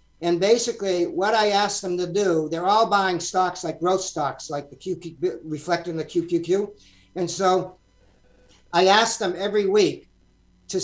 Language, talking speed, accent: English, 155 wpm, American